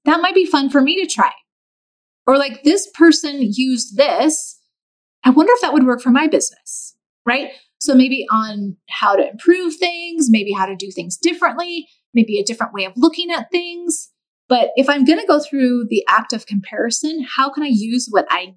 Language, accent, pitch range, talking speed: English, American, 230-310 Hz, 200 wpm